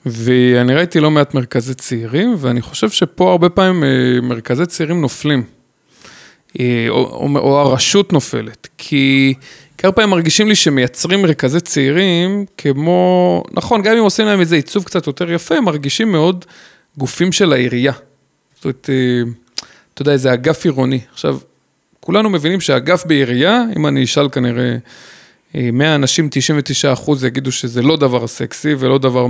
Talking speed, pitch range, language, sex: 145 wpm, 130-180 Hz, Hebrew, male